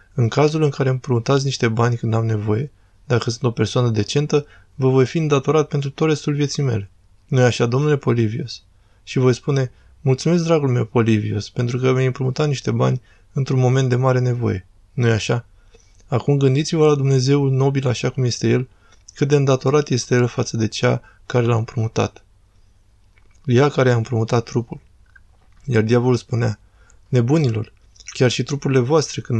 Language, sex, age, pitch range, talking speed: Romanian, male, 20-39, 110-135 Hz, 165 wpm